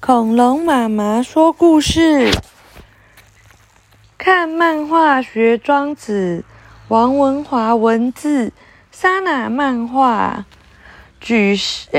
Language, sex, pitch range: Chinese, female, 195-295 Hz